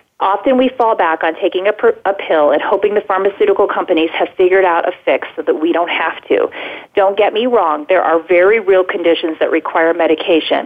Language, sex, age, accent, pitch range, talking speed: English, female, 30-49, American, 170-220 Hz, 215 wpm